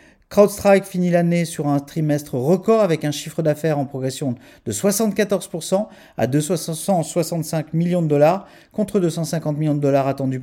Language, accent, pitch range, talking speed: French, French, 150-185 Hz, 150 wpm